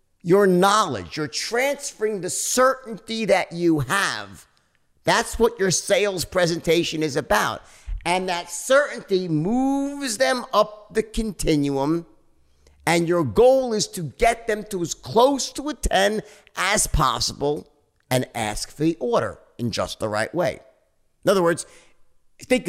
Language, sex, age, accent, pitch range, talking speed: English, male, 50-69, American, 150-225 Hz, 140 wpm